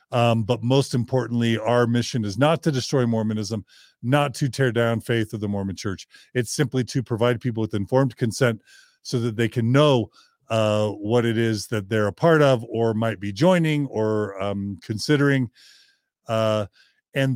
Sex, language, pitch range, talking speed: male, English, 110-135 Hz, 175 wpm